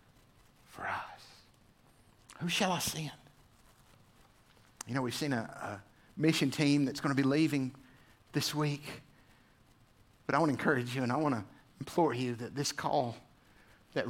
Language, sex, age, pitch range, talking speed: English, male, 50-69, 115-145 Hz, 155 wpm